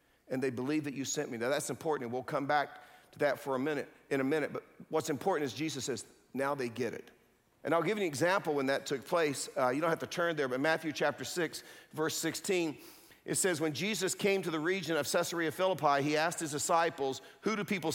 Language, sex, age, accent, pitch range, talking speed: English, male, 50-69, American, 145-170 Hz, 245 wpm